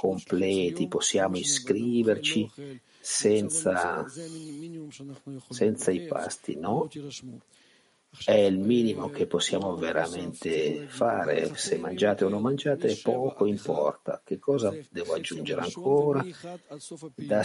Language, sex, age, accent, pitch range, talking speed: Italian, male, 50-69, native, 105-150 Hz, 95 wpm